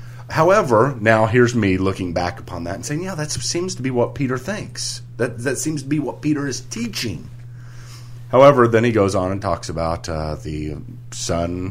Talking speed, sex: 195 wpm, male